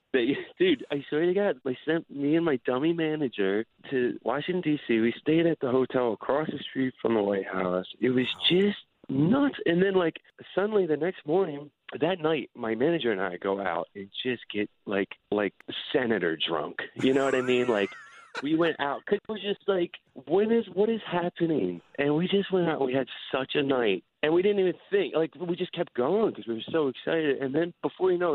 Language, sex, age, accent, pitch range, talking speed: English, male, 30-49, American, 120-170 Hz, 215 wpm